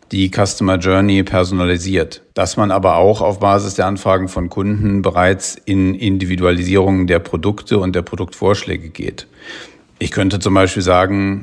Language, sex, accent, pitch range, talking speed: English, male, German, 90-100 Hz, 145 wpm